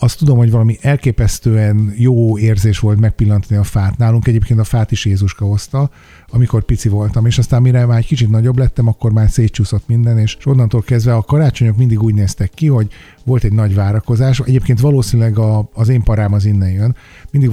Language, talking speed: Hungarian, 190 wpm